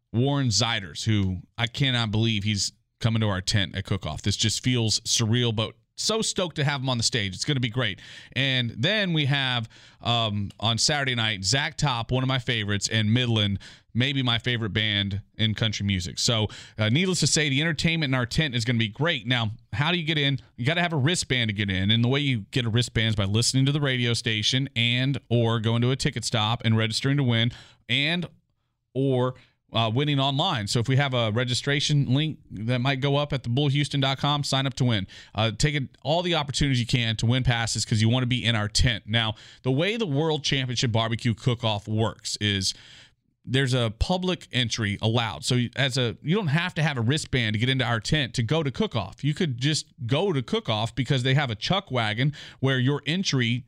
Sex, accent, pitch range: male, American, 115-140 Hz